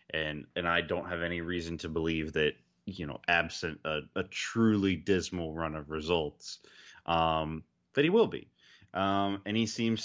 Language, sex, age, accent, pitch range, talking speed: English, male, 20-39, American, 85-110 Hz, 175 wpm